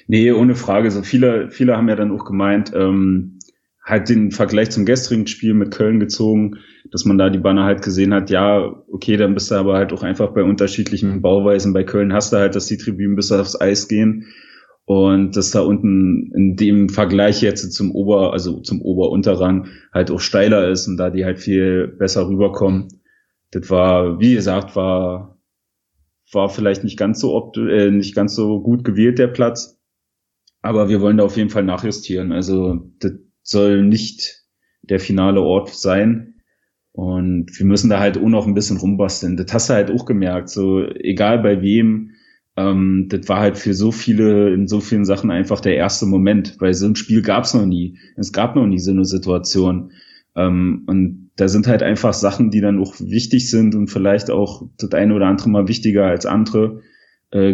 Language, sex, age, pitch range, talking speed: German, male, 30-49, 95-110 Hz, 195 wpm